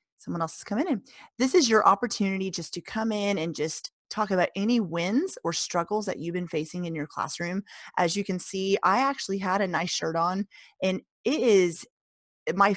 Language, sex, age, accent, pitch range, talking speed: English, female, 30-49, American, 170-210 Hz, 205 wpm